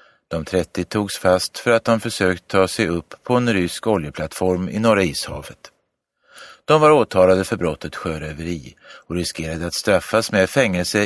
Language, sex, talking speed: Swedish, male, 165 wpm